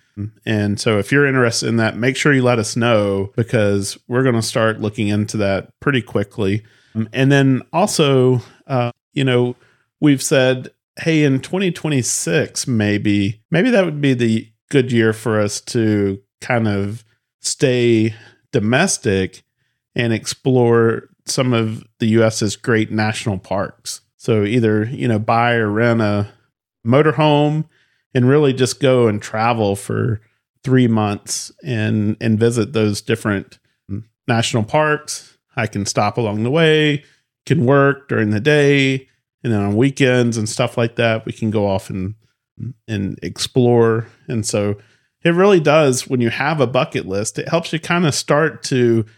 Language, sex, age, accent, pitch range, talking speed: English, male, 40-59, American, 110-135 Hz, 155 wpm